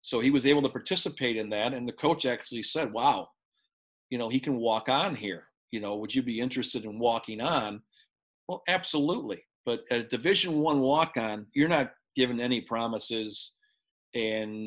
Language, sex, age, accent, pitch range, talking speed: English, male, 40-59, American, 115-135 Hz, 180 wpm